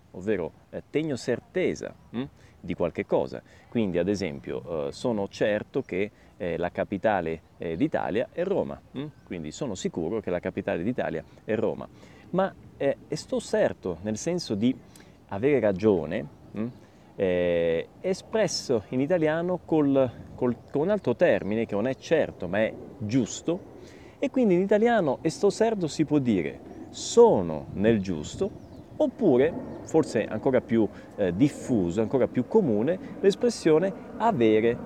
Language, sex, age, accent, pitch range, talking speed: Italian, male, 30-49, native, 105-170 Hz, 135 wpm